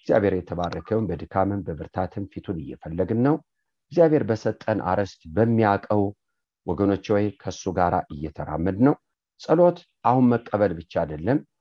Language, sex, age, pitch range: English, male, 50-69, 90-120 Hz